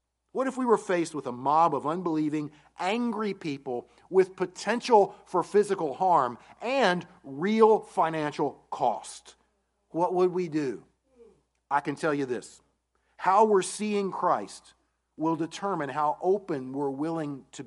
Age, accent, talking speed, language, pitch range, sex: 50-69, American, 140 wpm, English, 120-180 Hz, male